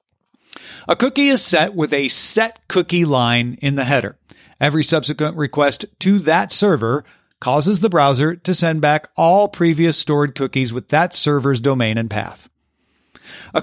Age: 40-59